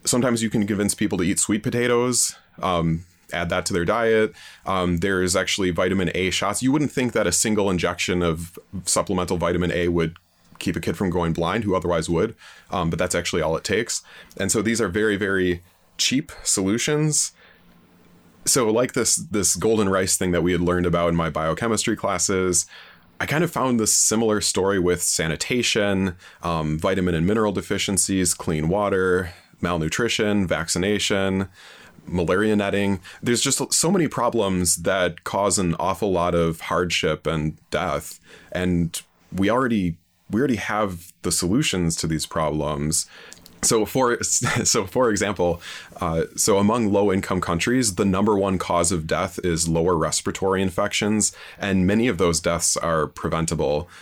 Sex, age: male, 30-49